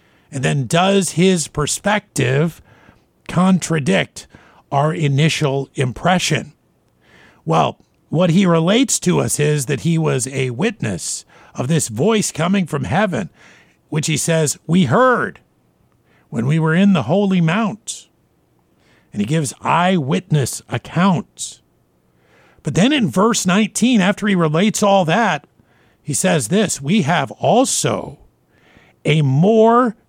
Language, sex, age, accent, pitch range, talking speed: English, male, 50-69, American, 145-200 Hz, 125 wpm